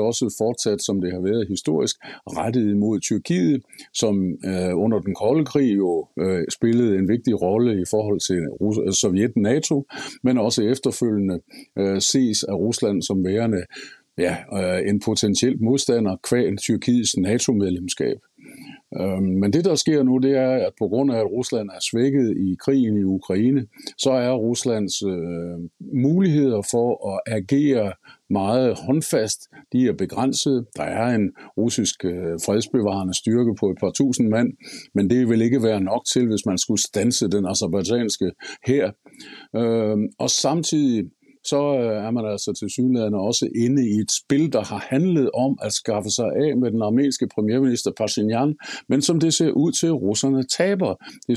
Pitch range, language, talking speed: 100-135 Hz, Danish, 160 wpm